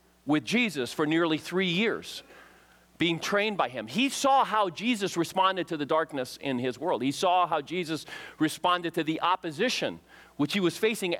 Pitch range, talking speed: 145-195 Hz, 175 wpm